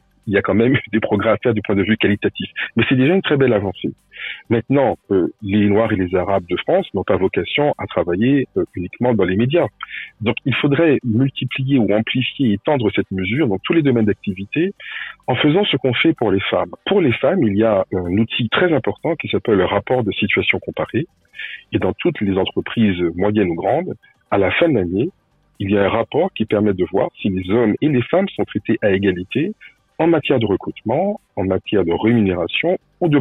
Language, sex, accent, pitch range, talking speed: French, male, French, 95-130 Hz, 220 wpm